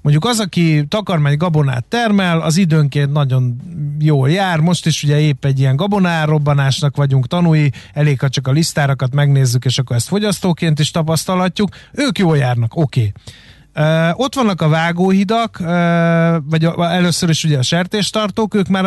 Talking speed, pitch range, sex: 160 wpm, 140-175 Hz, male